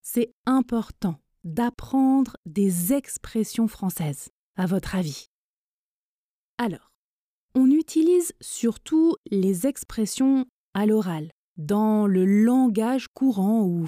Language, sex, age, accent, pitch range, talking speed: French, female, 20-39, French, 205-275 Hz, 95 wpm